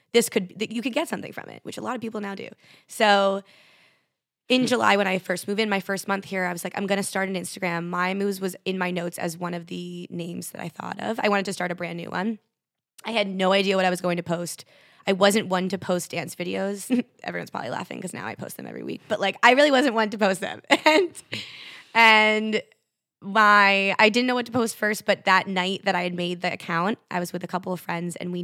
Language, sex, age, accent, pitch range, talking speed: English, female, 20-39, American, 185-235 Hz, 265 wpm